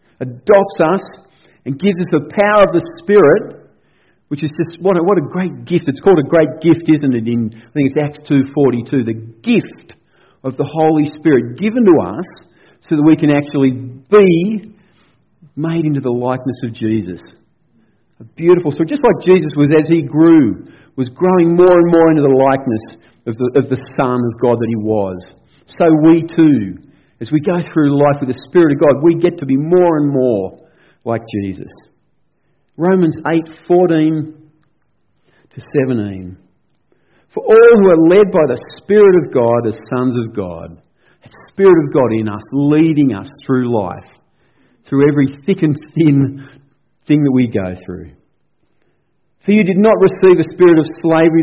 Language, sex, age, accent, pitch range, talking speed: English, male, 50-69, Australian, 125-170 Hz, 180 wpm